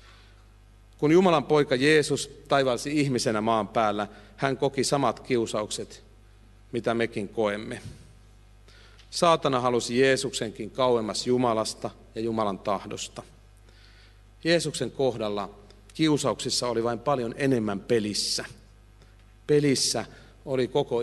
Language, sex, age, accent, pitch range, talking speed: Finnish, male, 40-59, native, 105-125 Hz, 95 wpm